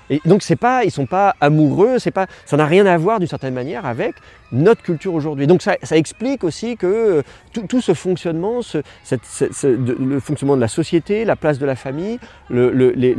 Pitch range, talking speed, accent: 120-170 Hz, 235 wpm, French